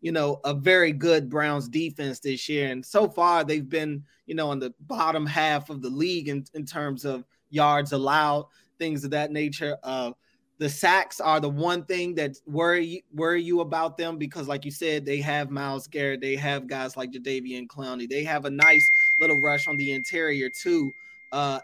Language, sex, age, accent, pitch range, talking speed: English, male, 20-39, American, 140-165 Hz, 200 wpm